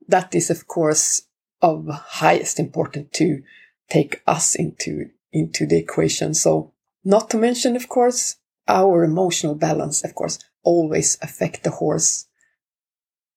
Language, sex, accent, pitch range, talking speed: English, female, Swedish, 170-225 Hz, 130 wpm